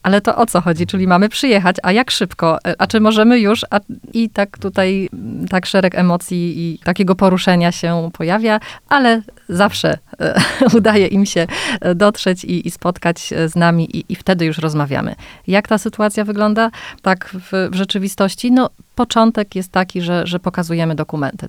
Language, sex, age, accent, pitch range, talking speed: Polish, female, 30-49, native, 170-190 Hz, 165 wpm